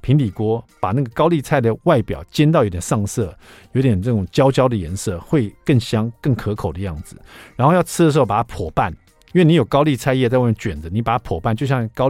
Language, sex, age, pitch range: Chinese, male, 50-69, 100-150 Hz